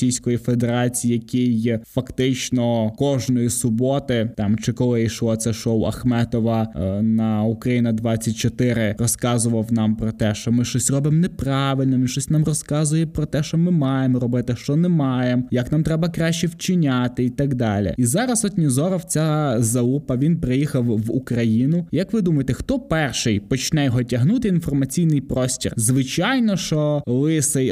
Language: Ukrainian